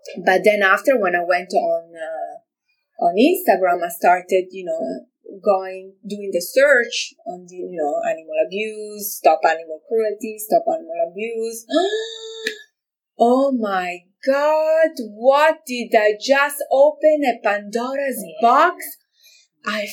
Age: 30-49